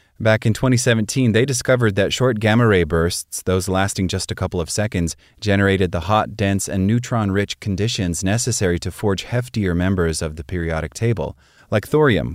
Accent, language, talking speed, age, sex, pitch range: American, English, 165 wpm, 30-49, male, 90-110 Hz